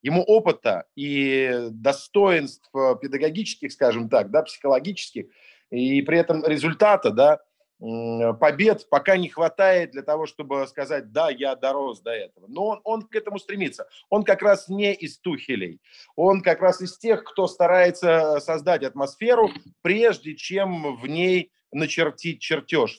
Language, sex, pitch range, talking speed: Russian, male, 135-195 Hz, 140 wpm